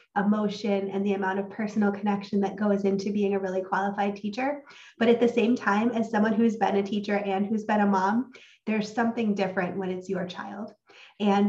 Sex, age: female, 20-39